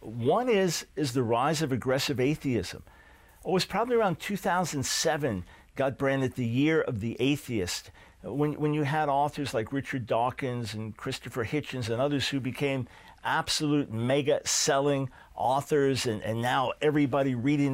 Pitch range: 125-150 Hz